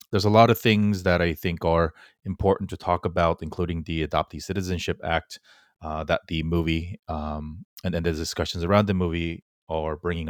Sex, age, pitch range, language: male, 30-49, 85-105 Hz, English